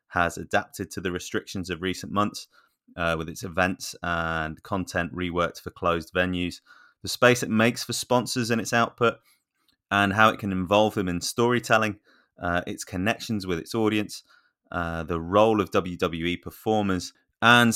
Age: 20-39